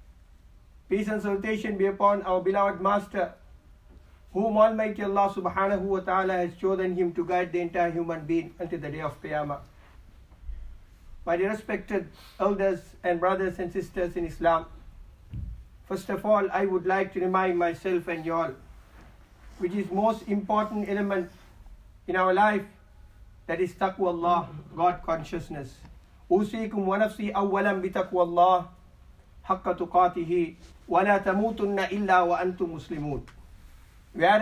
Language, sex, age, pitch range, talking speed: English, male, 50-69, 150-195 Hz, 115 wpm